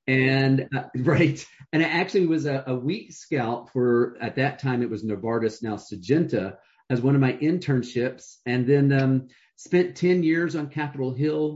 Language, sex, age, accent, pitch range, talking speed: English, male, 40-59, American, 110-135 Hz, 175 wpm